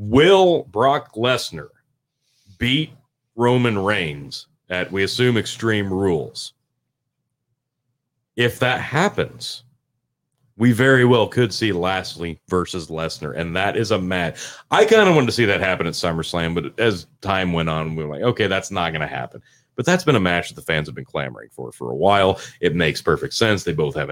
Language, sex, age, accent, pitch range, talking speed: English, male, 30-49, American, 90-125 Hz, 180 wpm